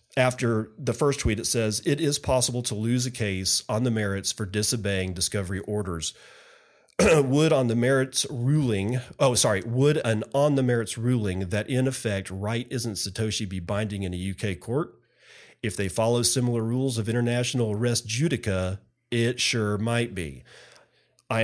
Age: 40-59